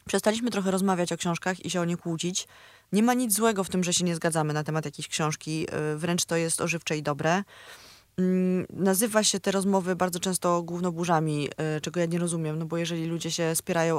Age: 20-39